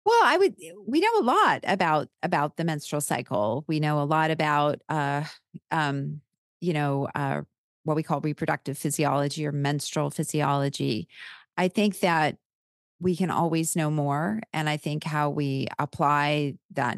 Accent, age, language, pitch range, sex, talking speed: American, 40-59, English, 145-170 Hz, female, 160 wpm